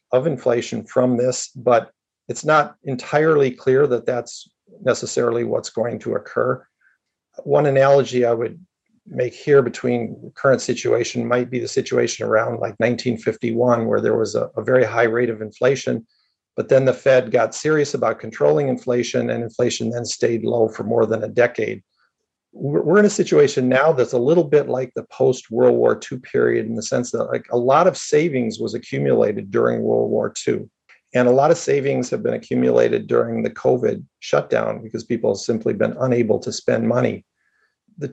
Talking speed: 180 wpm